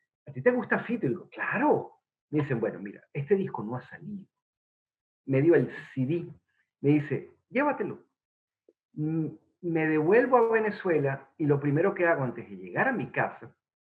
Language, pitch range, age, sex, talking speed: English, 130-210 Hz, 50-69, male, 170 wpm